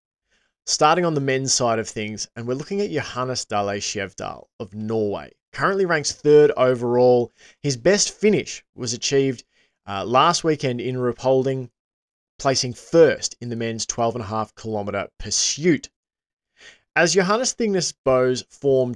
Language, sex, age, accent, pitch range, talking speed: English, male, 20-39, Australian, 110-145 Hz, 140 wpm